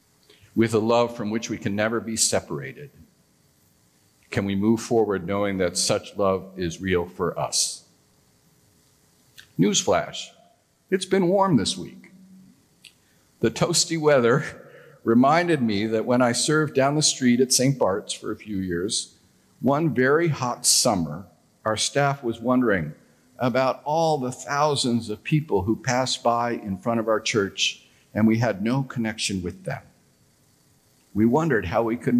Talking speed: 150 wpm